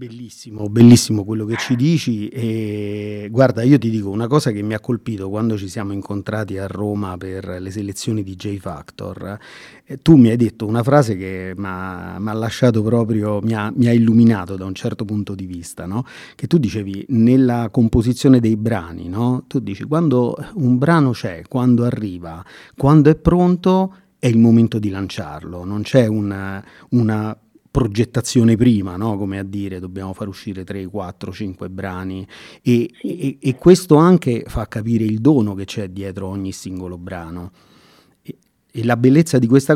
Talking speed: 175 wpm